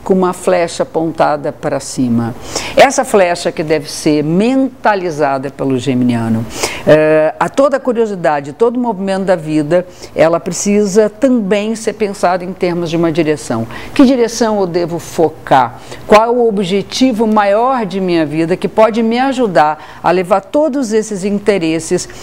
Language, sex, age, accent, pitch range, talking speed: Portuguese, female, 50-69, Brazilian, 160-245 Hz, 145 wpm